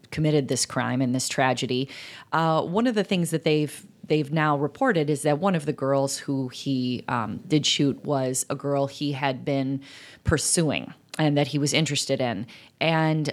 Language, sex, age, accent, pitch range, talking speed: English, female, 30-49, American, 135-160 Hz, 185 wpm